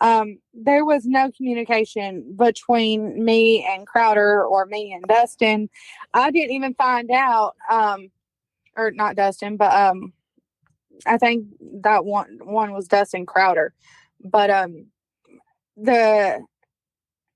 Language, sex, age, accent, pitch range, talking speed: English, female, 20-39, American, 210-255 Hz, 120 wpm